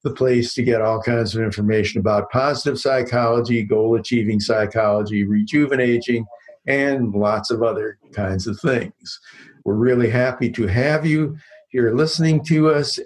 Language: English